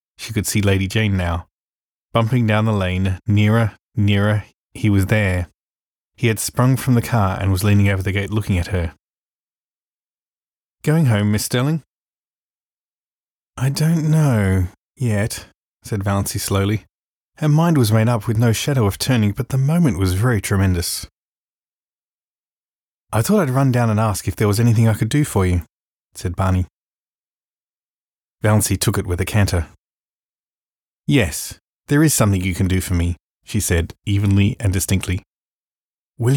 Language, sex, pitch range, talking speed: English, male, 95-120 Hz, 160 wpm